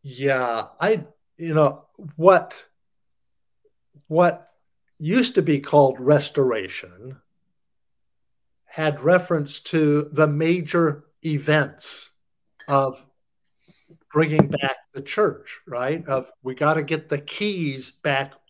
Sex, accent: male, American